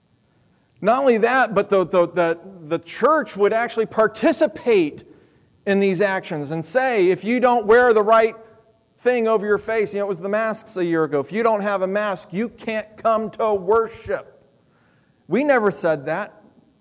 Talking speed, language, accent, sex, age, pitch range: 175 wpm, English, American, male, 40-59, 140-205 Hz